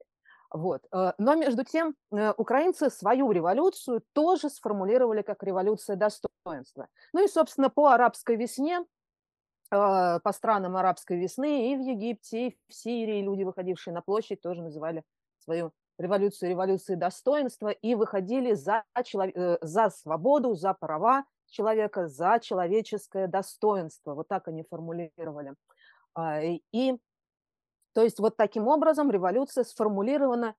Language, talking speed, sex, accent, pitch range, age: Russian, 115 wpm, female, native, 180-240 Hz, 30-49